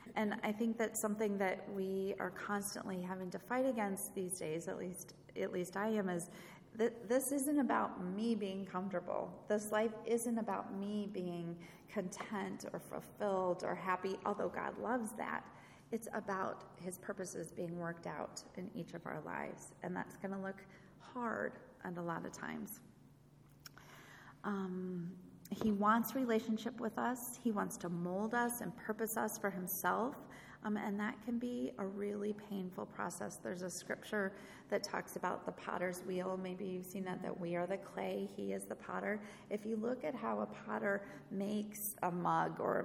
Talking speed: 175 wpm